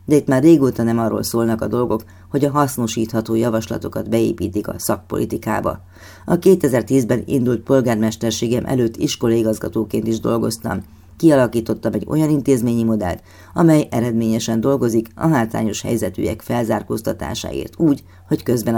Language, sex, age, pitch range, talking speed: Hungarian, female, 30-49, 110-130 Hz, 125 wpm